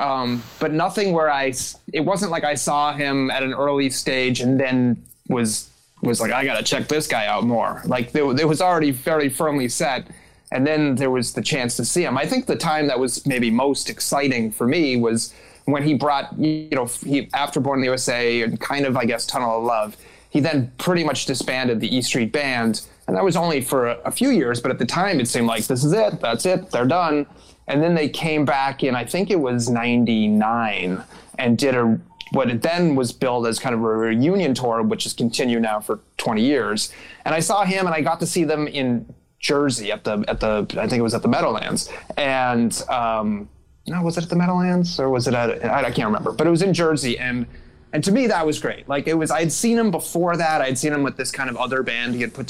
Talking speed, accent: 240 wpm, American